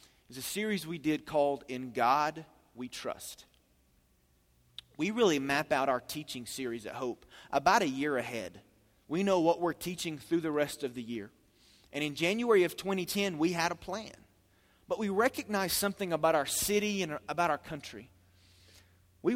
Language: English